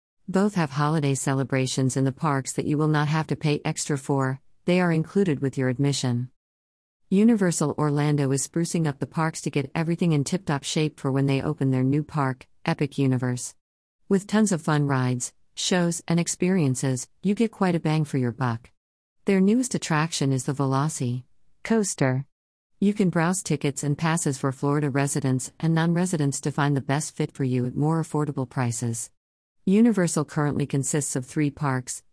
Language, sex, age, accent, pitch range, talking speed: English, female, 50-69, American, 130-165 Hz, 180 wpm